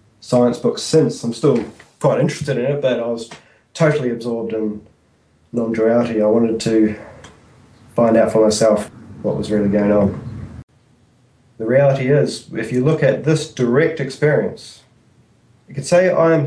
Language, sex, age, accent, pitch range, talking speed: English, male, 20-39, Australian, 110-135 Hz, 160 wpm